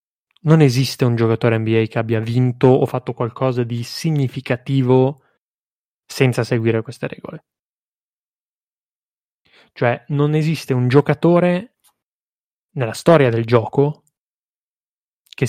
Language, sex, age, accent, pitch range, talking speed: Italian, male, 20-39, native, 120-145 Hz, 105 wpm